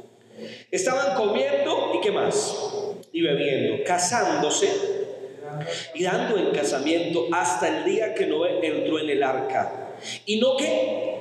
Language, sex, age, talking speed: Spanish, male, 40-59, 130 wpm